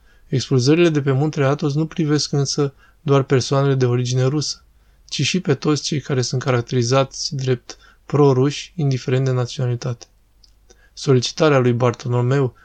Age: 20-39